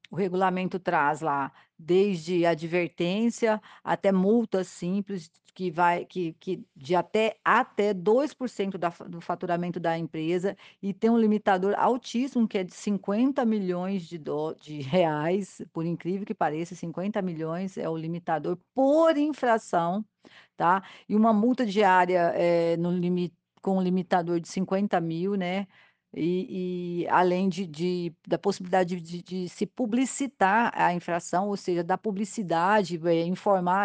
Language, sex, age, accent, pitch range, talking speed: Portuguese, female, 50-69, Brazilian, 170-200 Hz, 140 wpm